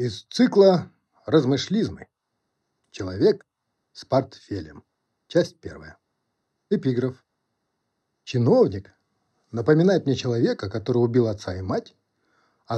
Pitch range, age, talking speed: 110-150 Hz, 50-69, 90 wpm